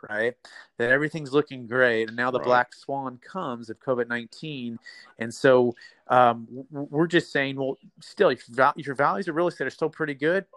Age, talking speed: 30-49, 180 wpm